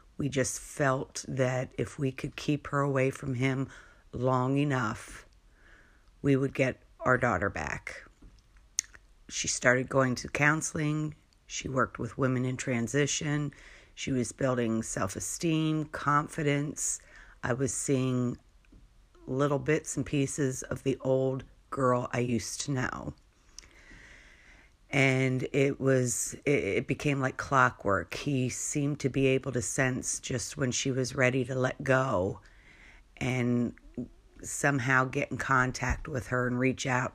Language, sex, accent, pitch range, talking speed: English, female, American, 120-135 Hz, 135 wpm